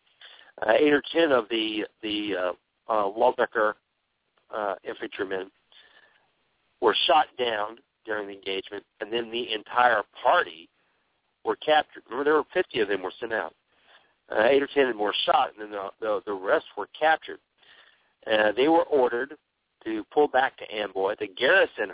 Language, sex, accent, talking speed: English, male, American, 165 wpm